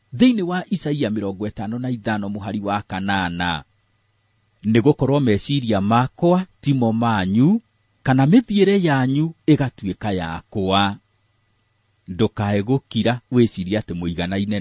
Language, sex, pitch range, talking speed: English, male, 105-150 Hz, 110 wpm